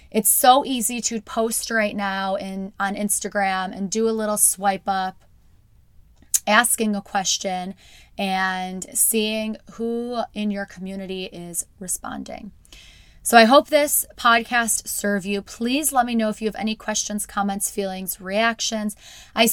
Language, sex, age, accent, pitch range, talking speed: English, female, 20-39, American, 195-225 Hz, 145 wpm